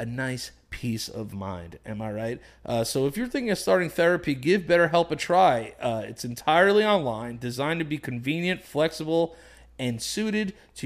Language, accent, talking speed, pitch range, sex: English, American, 175 wpm, 120-165 Hz, male